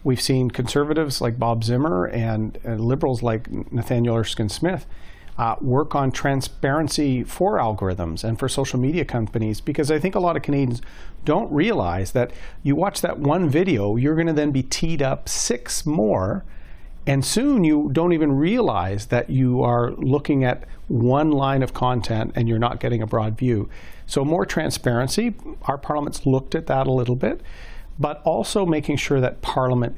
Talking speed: 170 wpm